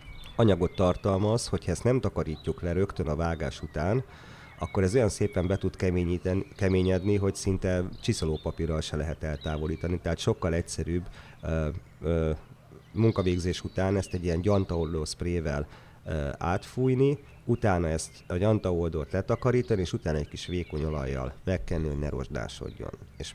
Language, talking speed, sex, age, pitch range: Hungarian, 135 wpm, male, 30-49, 80-100 Hz